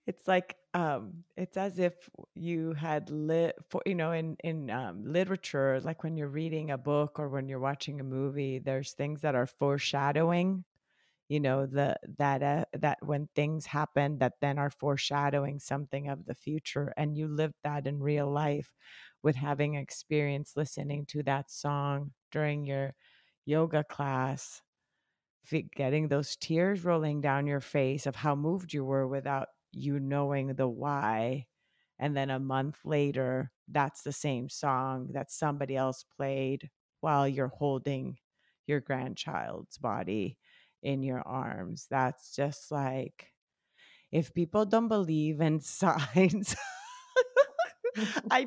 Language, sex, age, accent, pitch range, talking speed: English, female, 30-49, American, 140-180 Hz, 145 wpm